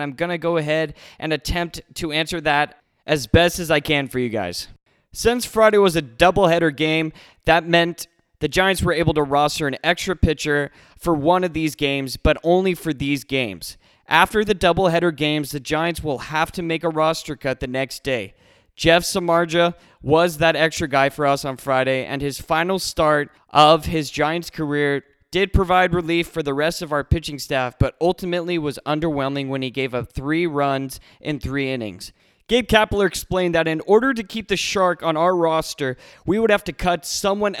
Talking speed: 195 wpm